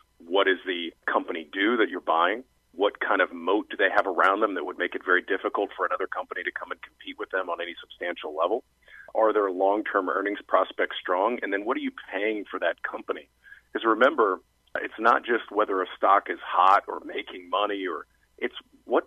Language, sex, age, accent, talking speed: English, male, 40-59, American, 210 wpm